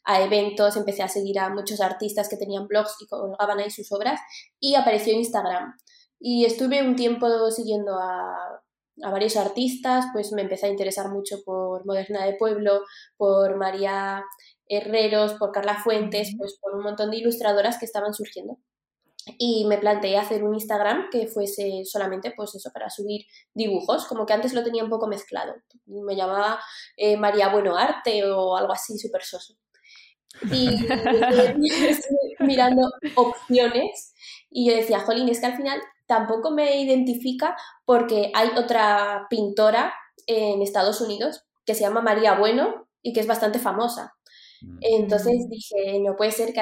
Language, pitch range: Spanish, 200-235 Hz